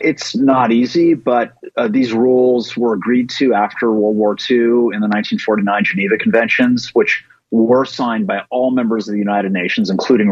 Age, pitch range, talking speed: 30-49, 105-130 Hz, 175 wpm